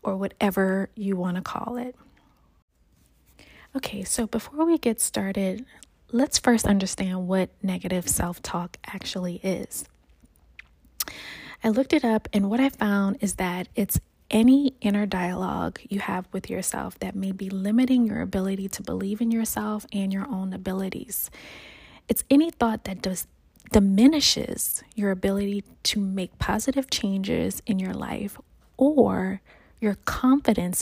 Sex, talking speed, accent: female, 140 wpm, American